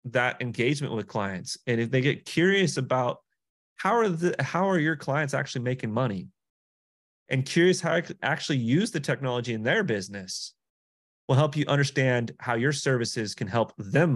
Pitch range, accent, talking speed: 110-145 Hz, American, 180 wpm